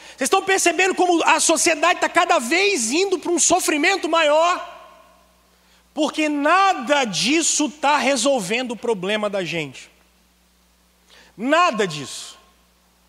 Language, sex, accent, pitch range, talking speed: Portuguese, male, Brazilian, 200-310 Hz, 115 wpm